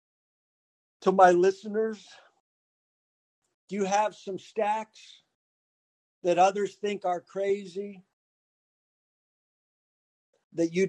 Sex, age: male, 50-69